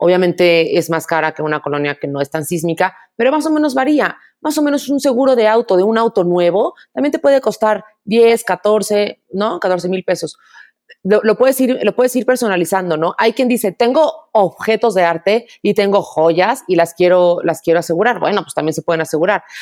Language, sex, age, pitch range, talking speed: Spanish, female, 30-49, 190-260 Hz, 210 wpm